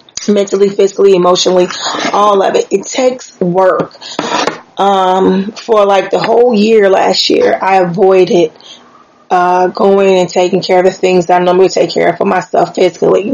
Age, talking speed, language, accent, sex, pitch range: 30-49, 165 wpm, English, American, female, 185-220 Hz